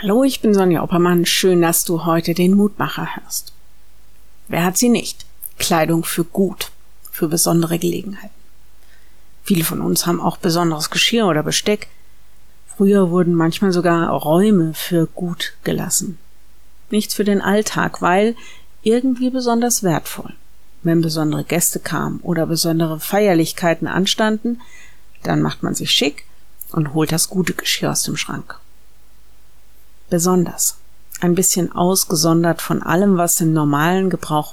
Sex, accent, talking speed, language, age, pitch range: female, German, 135 wpm, German, 50-69, 165-200 Hz